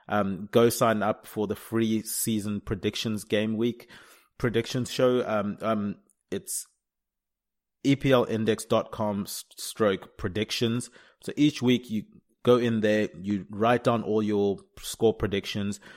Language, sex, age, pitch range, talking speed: English, male, 30-49, 100-120 Hz, 125 wpm